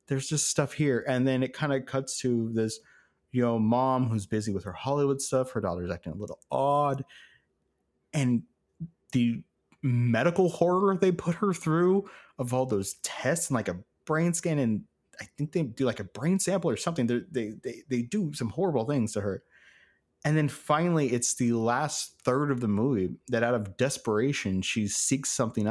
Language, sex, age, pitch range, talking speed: English, male, 30-49, 110-145 Hz, 190 wpm